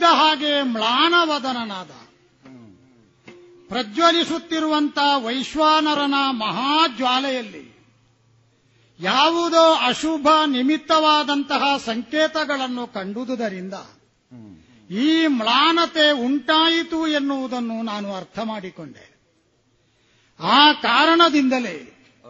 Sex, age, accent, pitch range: male, 50-69, native, 215-305 Hz